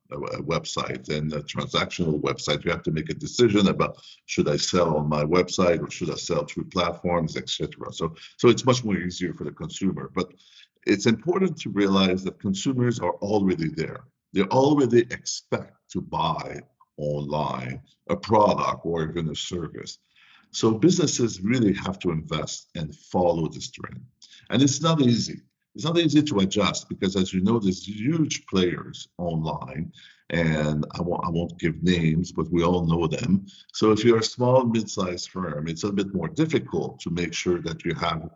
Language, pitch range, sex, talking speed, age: English, 80-110 Hz, male, 175 wpm, 50-69